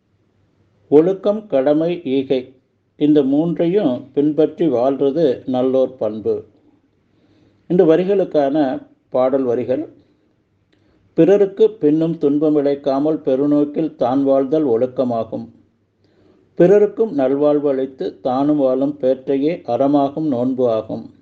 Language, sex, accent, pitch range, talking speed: Tamil, male, native, 125-155 Hz, 85 wpm